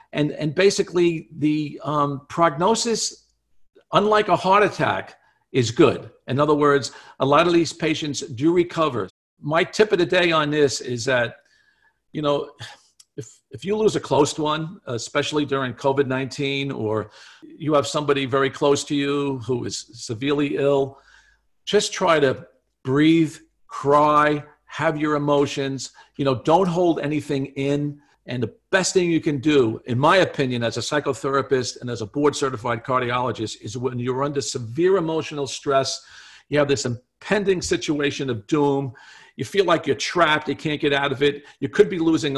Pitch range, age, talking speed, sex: 135-160 Hz, 50-69, 165 wpm, male